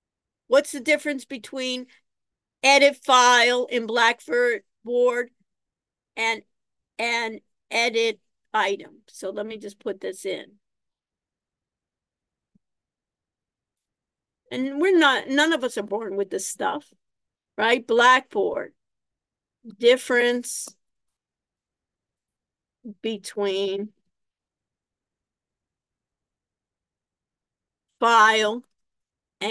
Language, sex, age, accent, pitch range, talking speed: English, female, 50-69, American, 225-280 Hz, 70 wpm